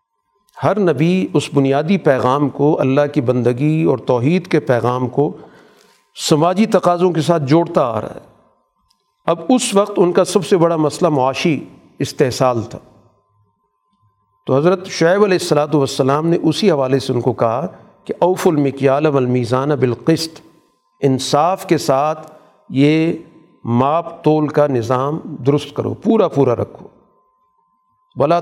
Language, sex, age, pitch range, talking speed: Urdu, male, 50-69, 130-185 Hz, 140 wpm